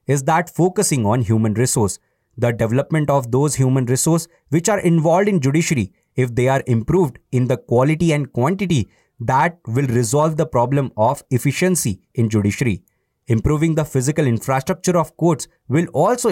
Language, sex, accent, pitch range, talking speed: English, male, Indian, 120-160 Hz, 160 wpm